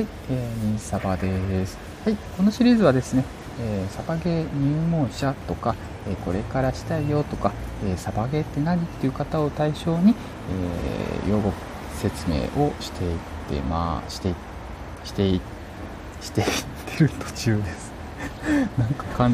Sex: male